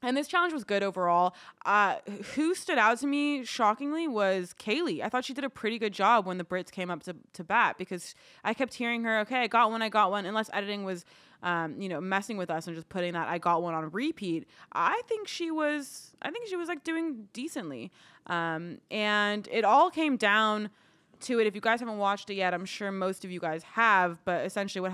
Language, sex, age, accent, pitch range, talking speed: English, female, 20-39, American, 170-215 Hz, 235 wpm